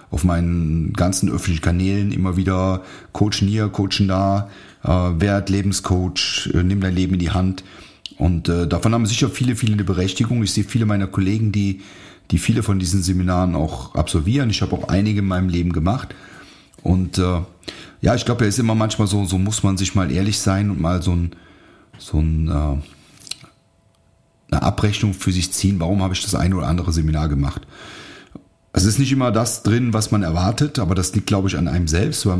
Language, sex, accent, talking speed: German, male, German, 200 wpm